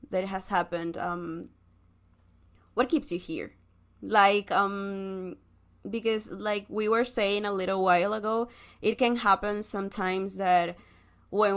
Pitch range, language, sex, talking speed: 180-210 Hz, English, female, 130 wpm